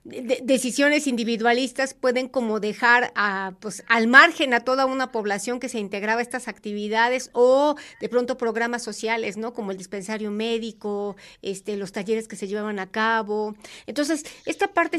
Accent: Mexican